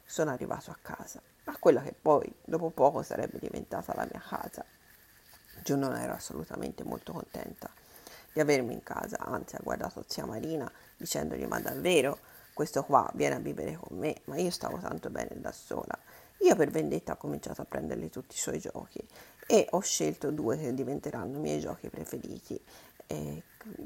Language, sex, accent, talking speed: Italian, female, native, 175 wpm